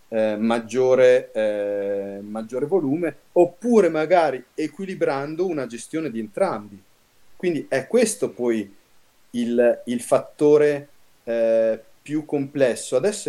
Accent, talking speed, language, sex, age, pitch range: native, 105 wpm, Italian, male, 30-49, 115-175 Hz